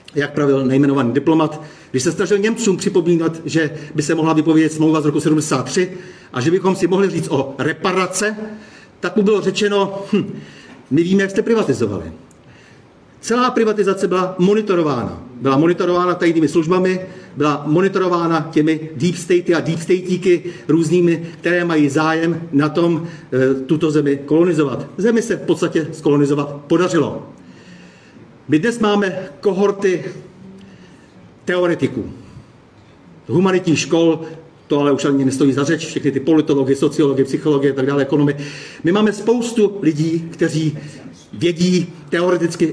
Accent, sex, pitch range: native, male, 145-180 Hz